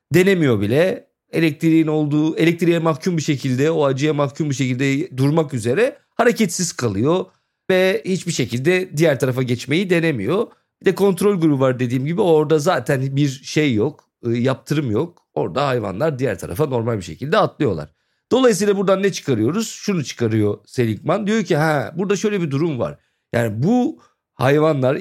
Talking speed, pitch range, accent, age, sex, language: 155 wpm, 140-195 Hz, native, 50-69, male, Turkish